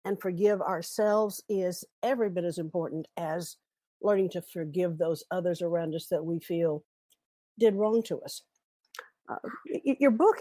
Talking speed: 150 wpm